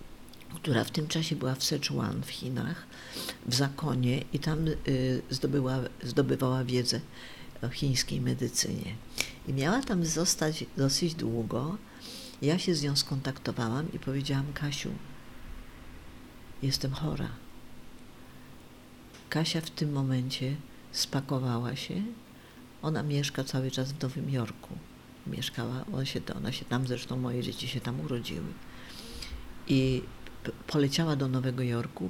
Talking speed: 120 wpm